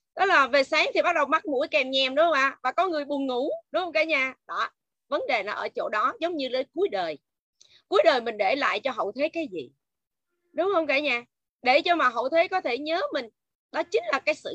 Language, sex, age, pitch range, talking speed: Vietnamese, female, 20-39, 260-330 Hz, 265 wpm